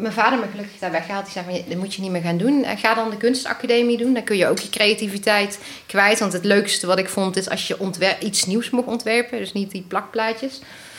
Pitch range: 185-225 Hz